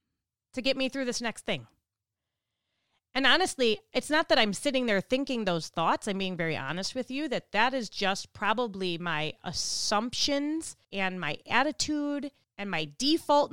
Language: English